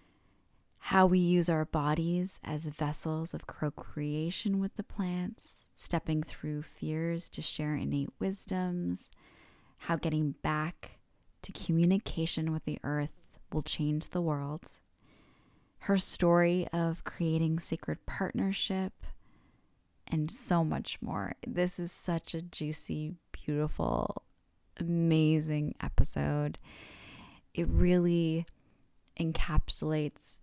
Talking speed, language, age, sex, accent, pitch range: 105 wpm, English, 20-39, female, American, 150-175 Hz